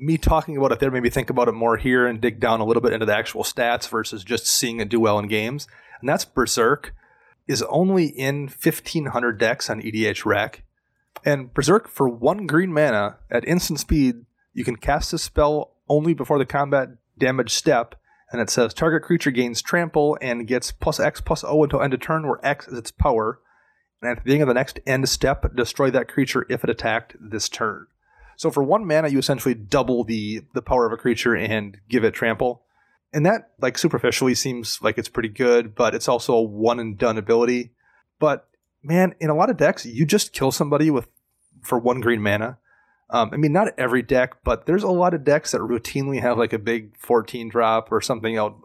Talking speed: 210 wpm